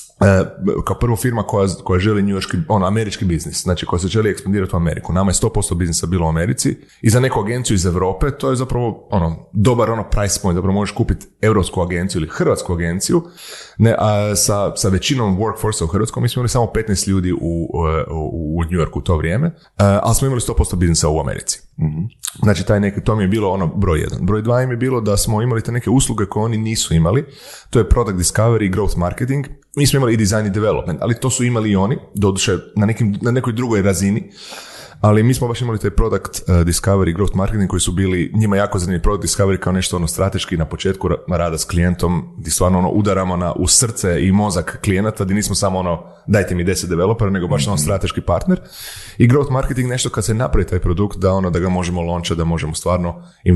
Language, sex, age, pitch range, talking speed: Croatian, male, 30-49, 90-110 Hz, 225 wpm